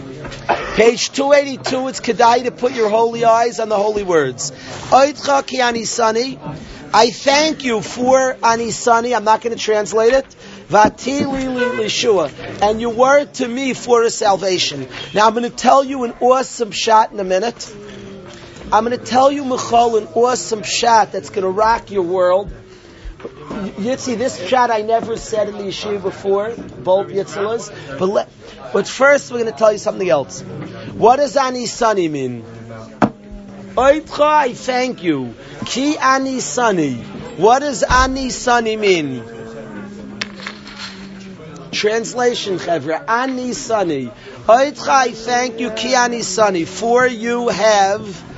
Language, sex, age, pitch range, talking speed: English, male, 40-59, 200-250 Hz, 135 wpm